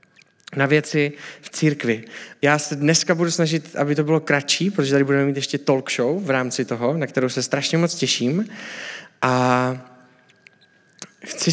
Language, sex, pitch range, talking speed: Czech, male, 135-165 Hz, 160 wpm